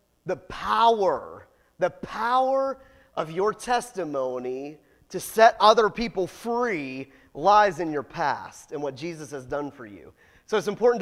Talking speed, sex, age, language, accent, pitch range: 140 wpm, male, 30-49, English, American, 165-260 Hz